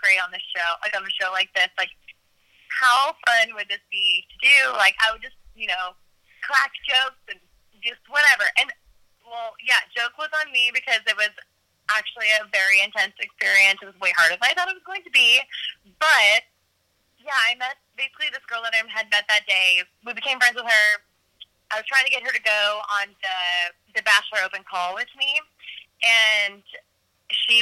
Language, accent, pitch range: English, American, 190-260 Hz